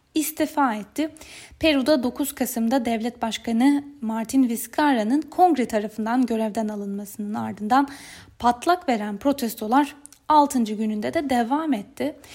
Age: 10-29